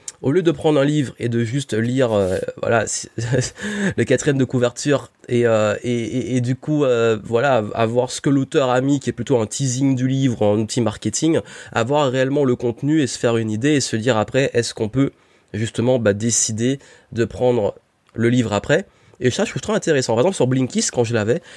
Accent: French